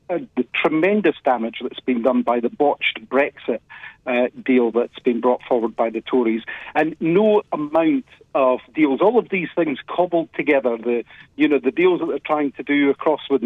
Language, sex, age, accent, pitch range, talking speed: English, male, 50-69, British, 130-160 Hz, 200 wpm